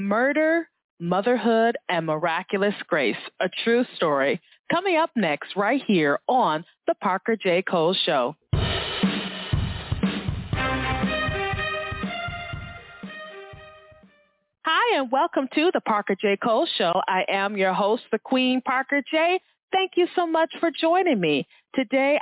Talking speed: 120 wpm